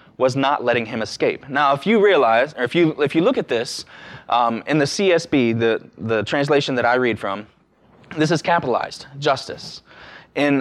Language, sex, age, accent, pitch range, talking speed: English, male, 20-39, American, 120-155 Hz, 185 wpm